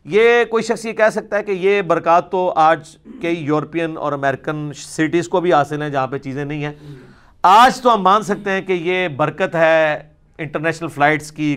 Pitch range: 120-165 Hz